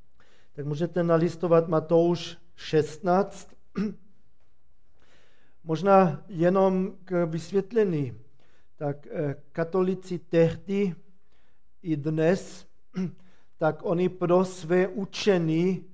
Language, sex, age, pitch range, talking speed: Czech, male, 40-59, 155-180 Hz, 75 wpm